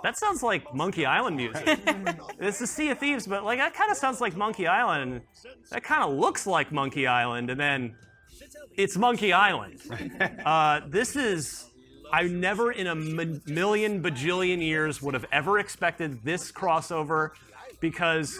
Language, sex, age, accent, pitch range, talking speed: English, male, 30-49, American, 140-190 Hz, 165 wpm